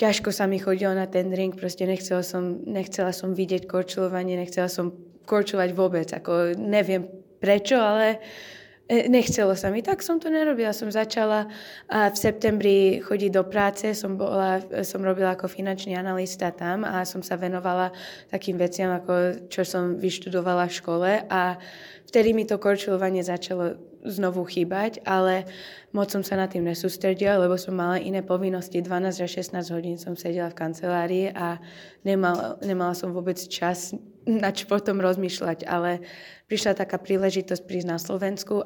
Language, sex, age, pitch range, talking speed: Slovak, female, 20-39, 180-205 Hz, 155 wpm